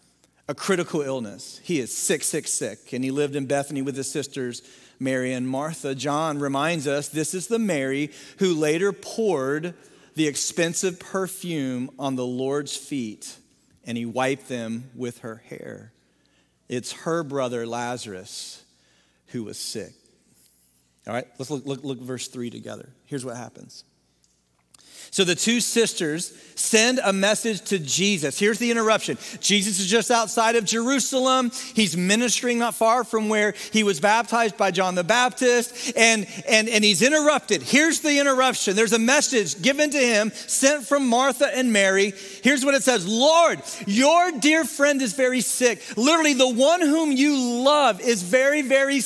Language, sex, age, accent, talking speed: English, male, 40-59, American, 165 wpm